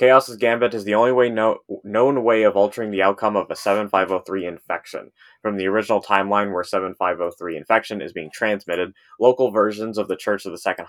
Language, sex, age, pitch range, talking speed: English, male, 20-39, 95-110 Hz, 195 wpm